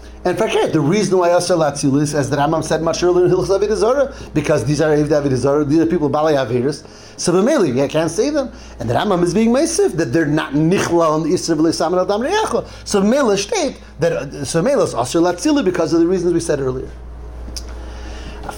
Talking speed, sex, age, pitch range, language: 215 wpm, male, 30-49, 140-195 Hz, English